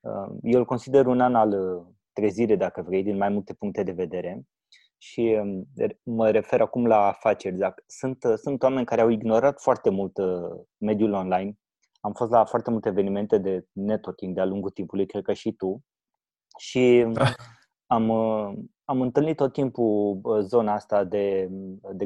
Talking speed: 150 wpm